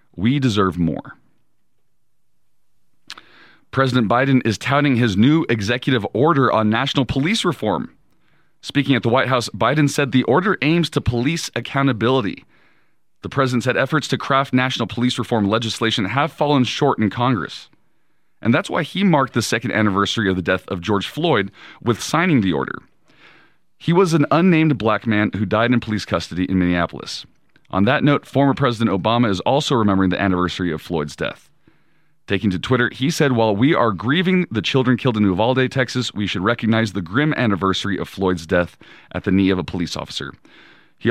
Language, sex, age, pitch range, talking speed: English, male, 40-59, 100-135 Hz, 175 wpm